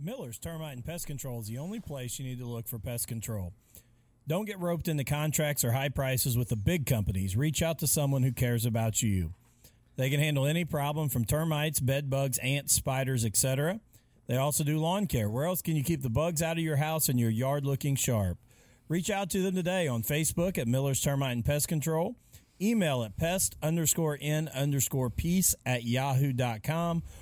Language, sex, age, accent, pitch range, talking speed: English, male, 40-59, American, 120-165 Hz, 200 wpm